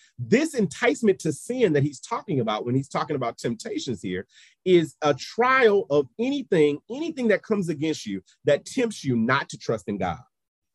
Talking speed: 180 wpm